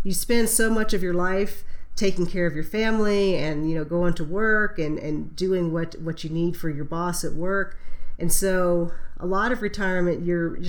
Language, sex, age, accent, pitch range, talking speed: English, female, 40-59, American, 165-200 Hz, 210 wpm